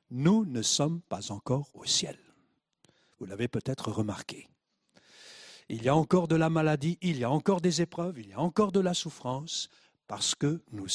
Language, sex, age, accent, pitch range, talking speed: French, male, 60-79, French, 140-220 Hz, 185 wpm